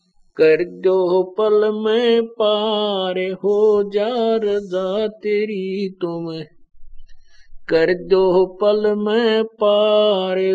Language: Hindi